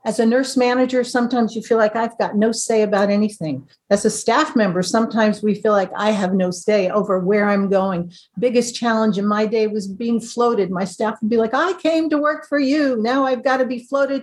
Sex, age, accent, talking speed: female, 50-69, American, 230 wpm